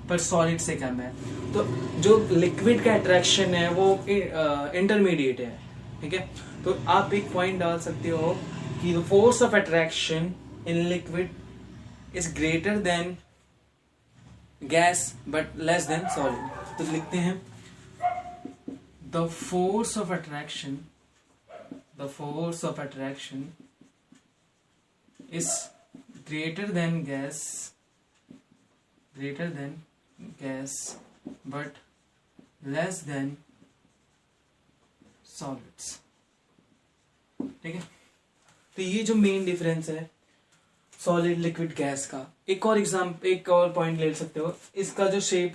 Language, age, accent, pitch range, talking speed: Hindi, 20-39, native, 145-180 Hz, 110 wpm